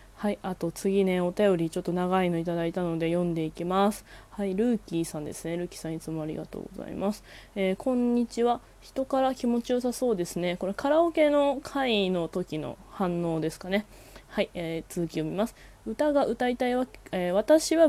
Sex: female